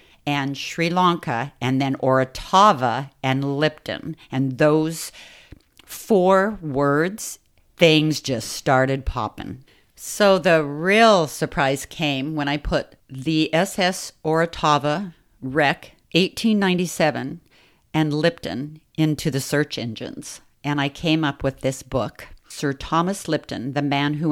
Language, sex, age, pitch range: English, female, 50-69, 130-165 Hz